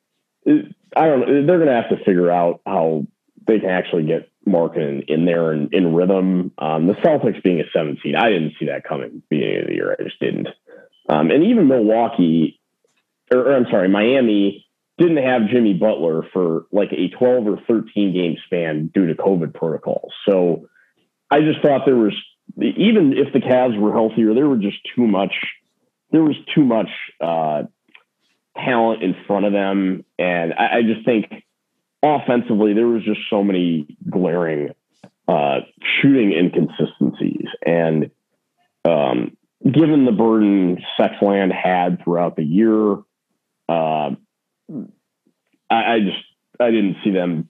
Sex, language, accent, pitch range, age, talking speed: male, English, American, 90-115 Hz, 40-59, 160 wpm